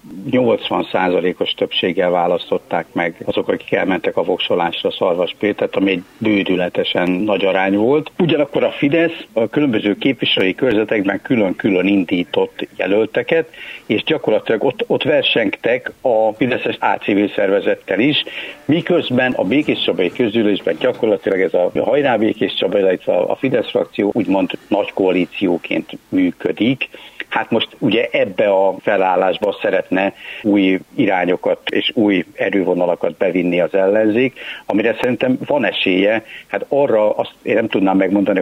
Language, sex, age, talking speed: Hungarian, male, 60-79, 130 wpm